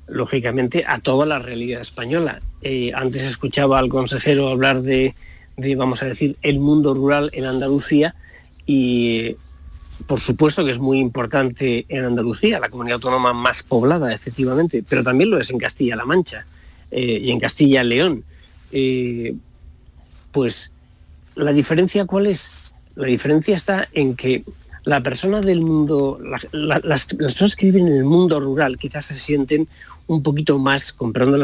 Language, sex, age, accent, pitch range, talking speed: Spanish, male, 40-59, Spanish, 120-150 Hz, 155 wpm